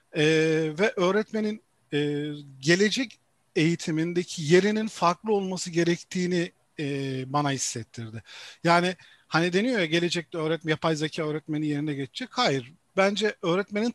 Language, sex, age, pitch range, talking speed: Turkish, male, 50-69, 150-205 Hz, 115 wpm